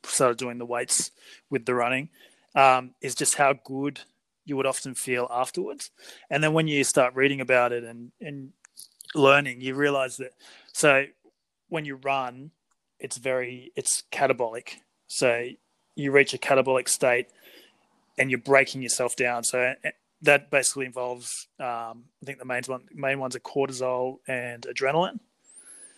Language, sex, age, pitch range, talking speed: English, male, 30-49, 120-140 Hz, 150 wpm